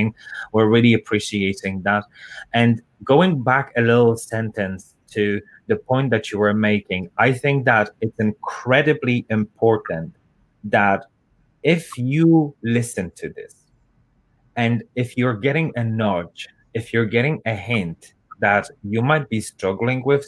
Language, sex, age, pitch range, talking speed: English, male, 30-49, 105-125 Hz, 135 wpm